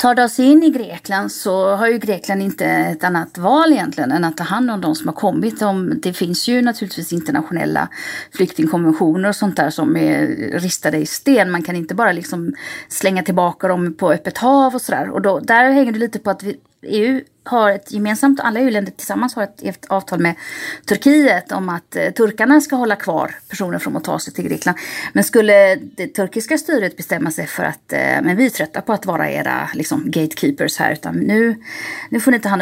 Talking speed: 210 wpm